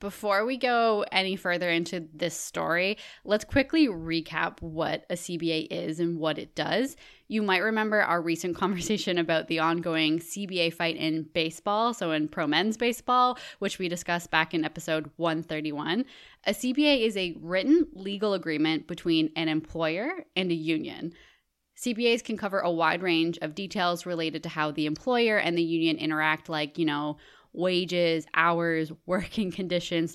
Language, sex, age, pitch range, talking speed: English, female, 10-29, 160-195 Hz, 160 wpm